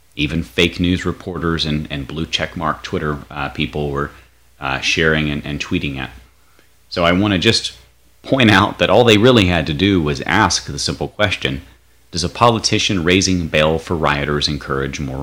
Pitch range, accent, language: 70-90 Hz, American, English